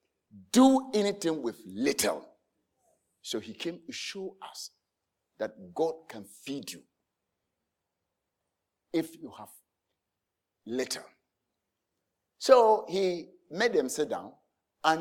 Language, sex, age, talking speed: English, male, 60-79, 105 wpm